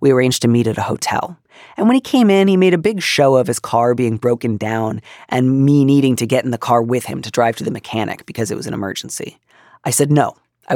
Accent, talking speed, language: American, 260 wpm, English